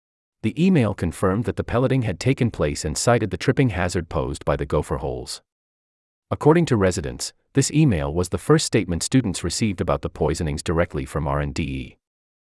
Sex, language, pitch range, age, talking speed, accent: male, English, 75-125 Hz, 40-59, 180 wpm, American